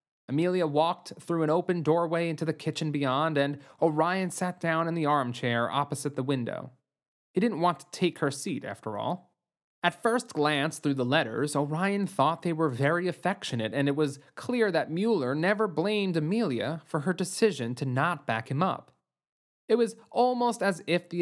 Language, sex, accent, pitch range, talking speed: English, male, American, 140-185 Hz, 180 wpm